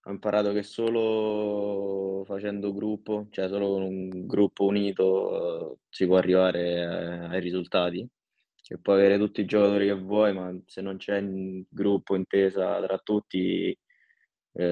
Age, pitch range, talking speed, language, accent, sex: 20-39, 95-105 Hz, 145 wpm, Italian, native, male